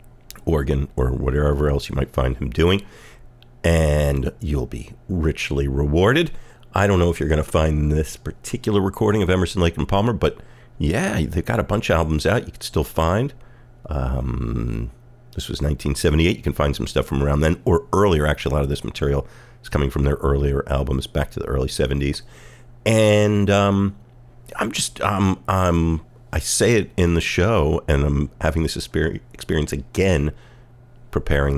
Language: English